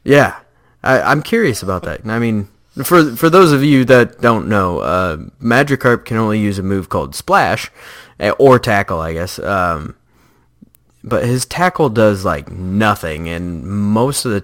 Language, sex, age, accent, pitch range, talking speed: English, male, 20-39, American, 95-120 Hz, 160 wpm